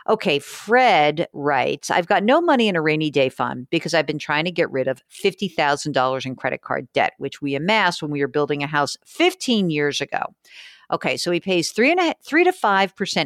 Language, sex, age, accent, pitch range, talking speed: English, female, 50-69, American, 145-200 Hz, 205 wpm